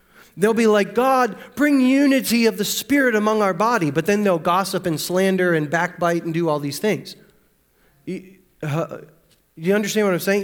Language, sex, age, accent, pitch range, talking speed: English, male, 30-49, American, 170-215 Hz, 185 wpm